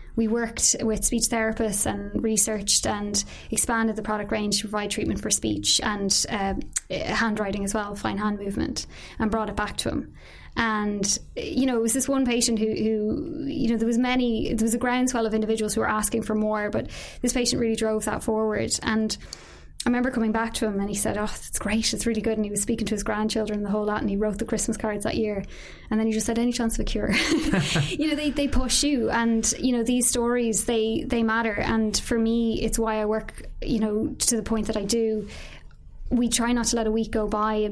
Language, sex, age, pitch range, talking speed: English, female, 20-39, 215-230 Hz, 235 wpm